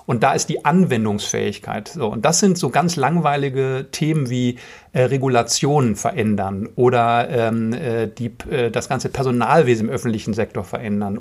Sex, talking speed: male, 150 wpm